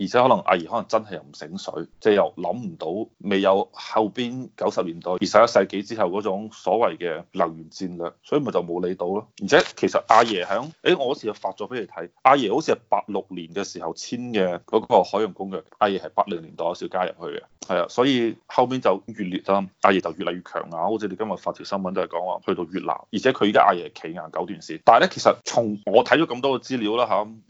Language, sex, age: Chinese, male, 20-39